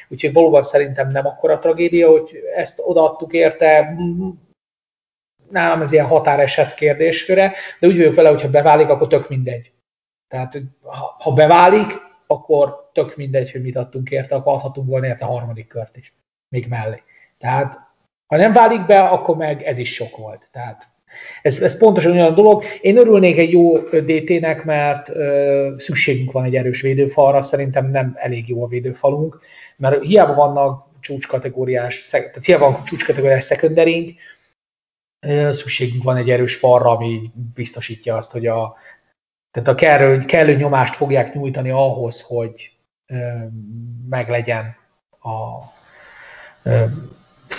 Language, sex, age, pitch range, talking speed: Hungarian, male, 30-49, 125-160 Hz, 135 wpm